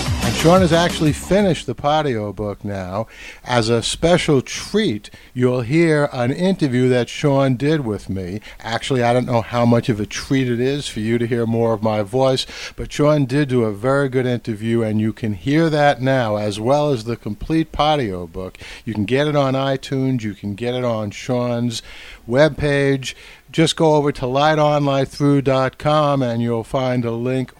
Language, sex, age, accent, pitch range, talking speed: English, male, 60-79, American, 115-145 Hz, 185 wpm